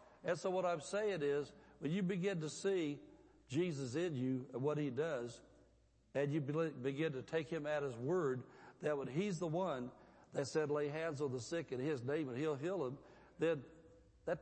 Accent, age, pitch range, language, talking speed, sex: American, 60-79, 135-175 Hz, English, 200 wpm, male